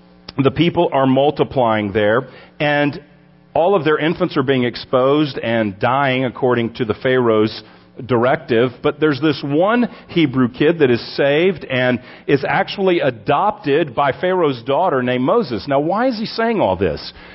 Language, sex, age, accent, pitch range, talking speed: English, male, 40-59, American, 140-205 Hz, 155 wpm